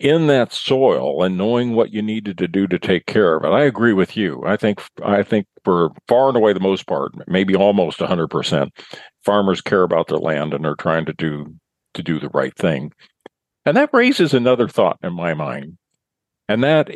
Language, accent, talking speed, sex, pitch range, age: English, American, 210 wpm, male, 90-120 Hz, 50-69